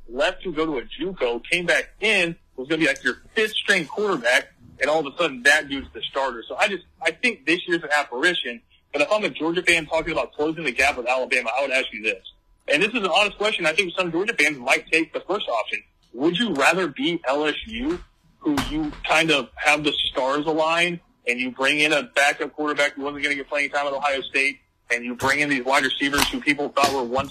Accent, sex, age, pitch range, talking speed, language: American, male, 30-49, 140-175 Hz, 245 wpm, English